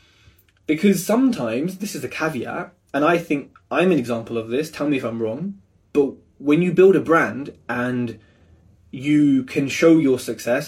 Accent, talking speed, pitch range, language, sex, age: British, 175 wpm, 105-155 Hz, English, male, 20-39